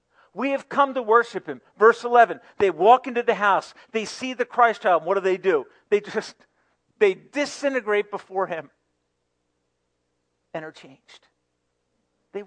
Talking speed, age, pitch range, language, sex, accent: 155 wpm, 50-69, 150-230 Hz, English, male, American